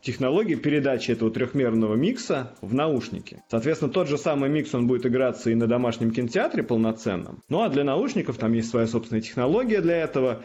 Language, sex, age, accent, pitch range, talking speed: Russian, male, 20-39, native, 115-140 Hz, 180 wpm